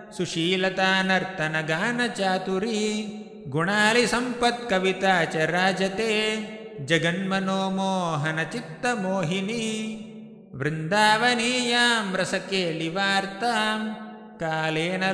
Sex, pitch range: male, 185-220 Hz